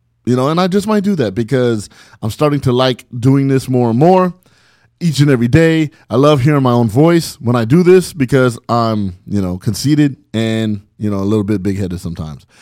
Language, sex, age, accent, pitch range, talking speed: English, male, 30-49, American, 120-160 Hz, 220 wpm